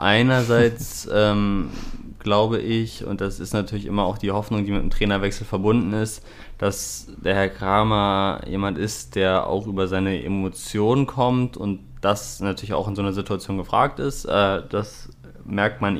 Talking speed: 165 wpm